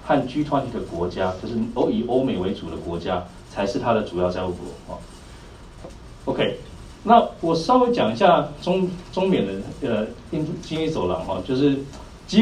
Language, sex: Chinese, male